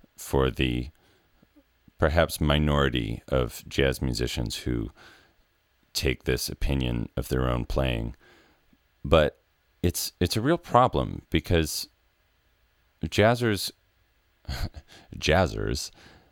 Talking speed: 90 wpm